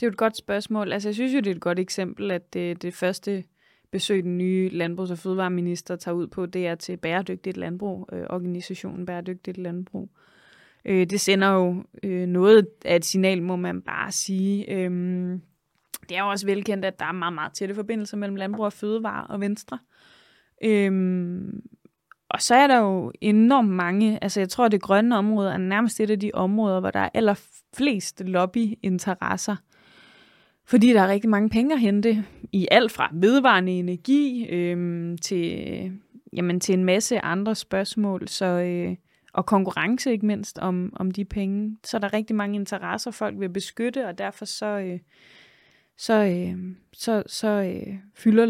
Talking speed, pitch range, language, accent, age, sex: 180 wpm, 180-215 Hz, Danish, native, 20-39, female